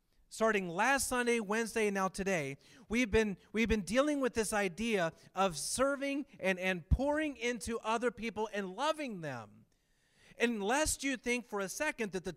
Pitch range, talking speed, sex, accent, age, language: 175-235 Hz, 170 wpm, male, American, 40-59, English